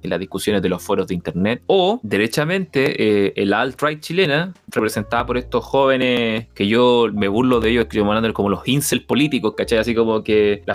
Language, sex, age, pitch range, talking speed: Spanish, male, 20-39, 115-150 Hz, 200 wpm